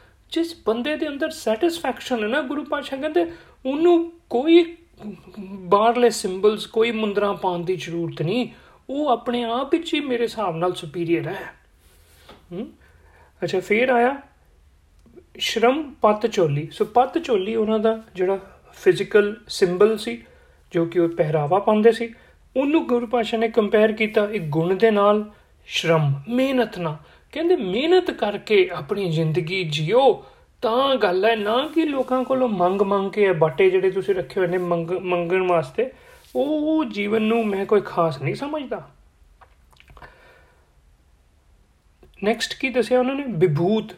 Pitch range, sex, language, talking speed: 180-265 Hz, male, Punjabi, 105 wpm